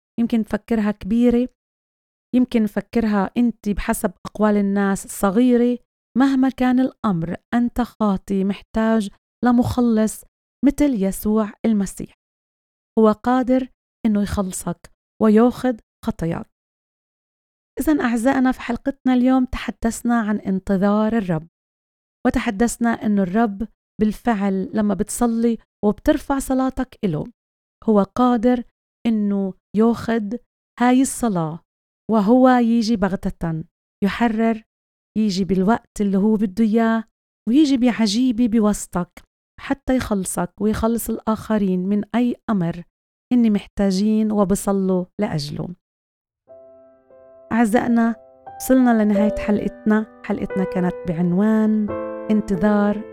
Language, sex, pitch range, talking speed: Arabic, female, 200-240 Hz, 95 wpm